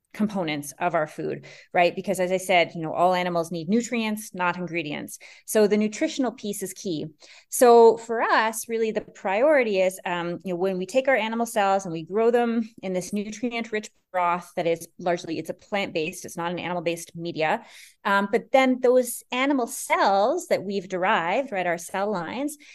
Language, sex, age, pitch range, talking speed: English, female, 30-49, 170-225 Hz, 185 wpm